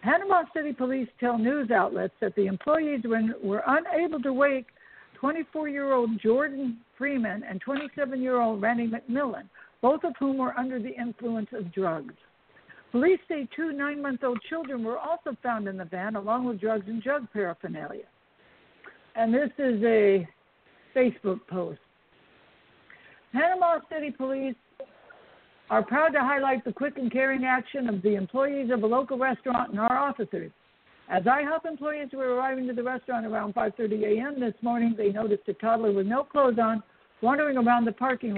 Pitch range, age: 215-275 Hz, 60-79